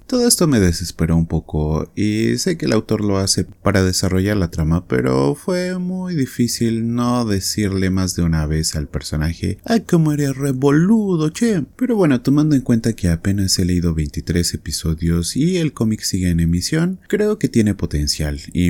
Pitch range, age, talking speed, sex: 85-120 Hz, 30-49, 180 wpm, male